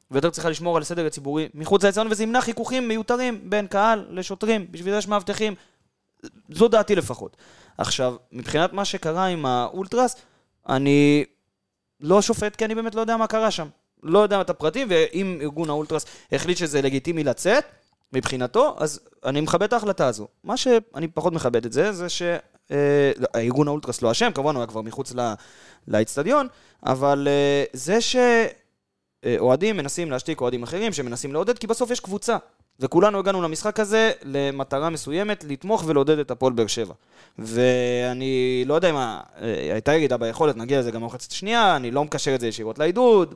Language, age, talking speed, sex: Hebrew, 20-39, 170 wpm, male